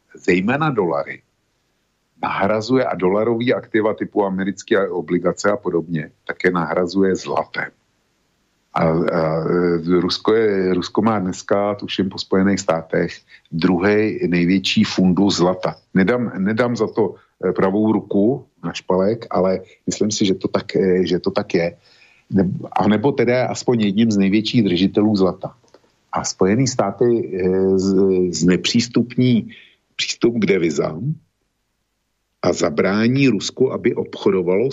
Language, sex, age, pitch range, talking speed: Slovak, male, 50-69, 90-110 Hz, 110 wpm